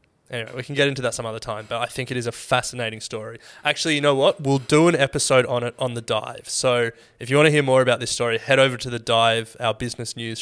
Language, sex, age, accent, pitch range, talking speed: English, male, 20-39, Australian, 120-140 Hz, 275 wpm